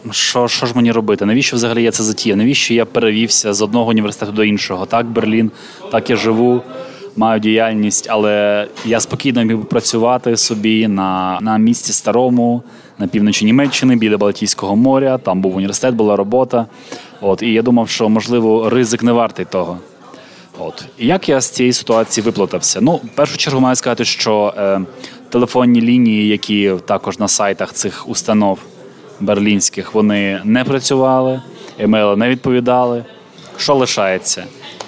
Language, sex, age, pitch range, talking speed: Ukrainian, male, 20-39, 105-125 Hz, 155 wpm